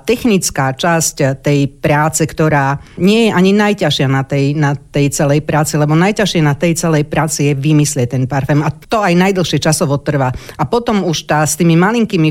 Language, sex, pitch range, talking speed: Slovak, female, 140-175 Hz, 185 wpm